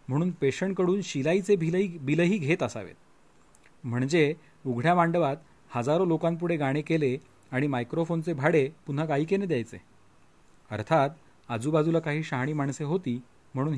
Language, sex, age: Marathi, male, 40-59